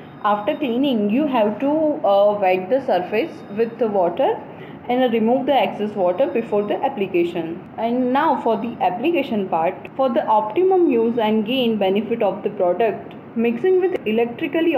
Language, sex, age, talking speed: English, female, 20-39, 160 wpm